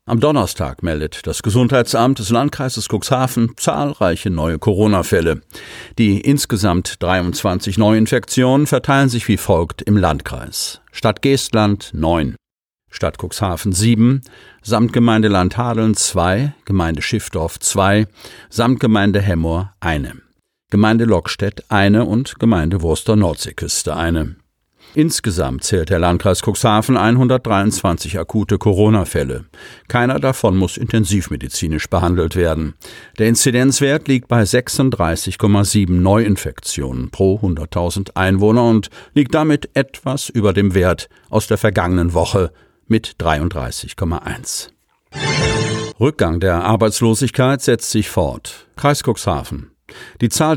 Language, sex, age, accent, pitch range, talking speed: German, male, 50-69, German, 90-120 Hz, 110 wpm